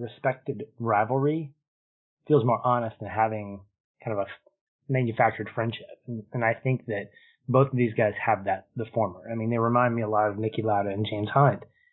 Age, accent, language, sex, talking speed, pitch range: 20-39, American, English, male, 185 wpm, 110-140 Hz